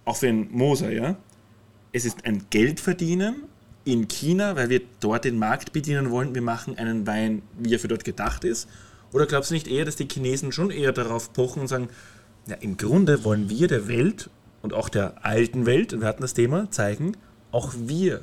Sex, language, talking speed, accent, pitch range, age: male, German, 200 wpm, German, 110-140 Hz, 30-49